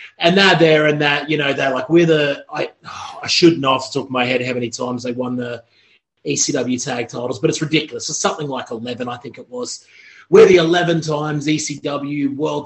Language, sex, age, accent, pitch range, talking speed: English, male, 30-49, Australian, 135-170 Hz, 225 wpm